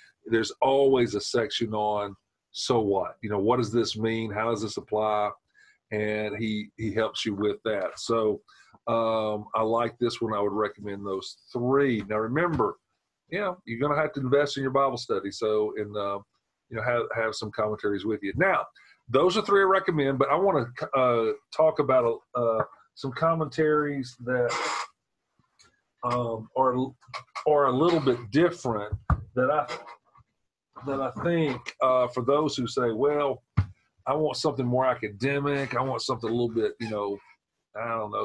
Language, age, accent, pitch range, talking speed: English, 40-59, American, 110-135 Hz, 175 wpm